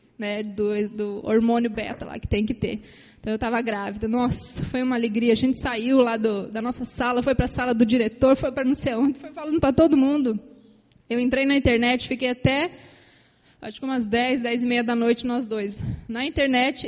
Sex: female